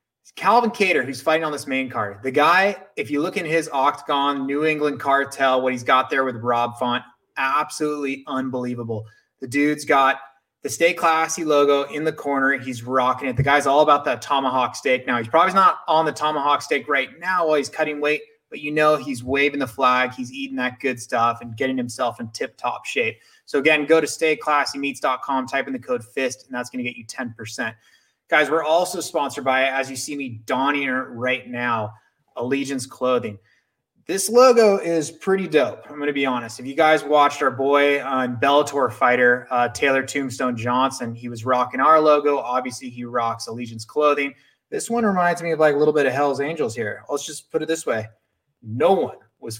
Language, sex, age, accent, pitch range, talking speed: English, male, 20-39, American, 125-150 Hz, 200 wpm